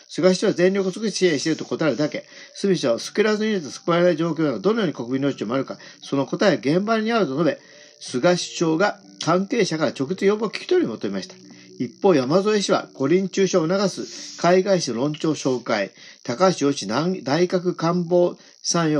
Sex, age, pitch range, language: male, 50-69, 150-190 Hz, Japanese